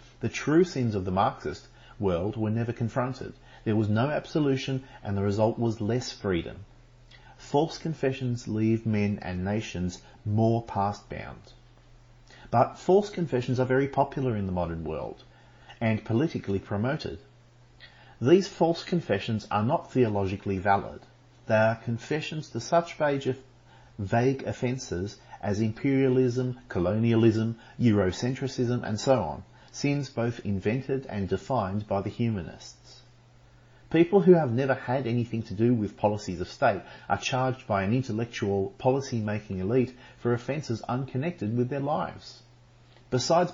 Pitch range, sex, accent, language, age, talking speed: 105-130 Hz, male, Australian, English, 40-59, 135 wpm